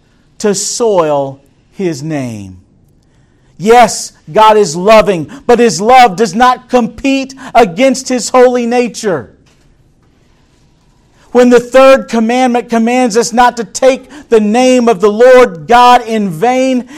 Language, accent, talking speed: English, American, 125 wpm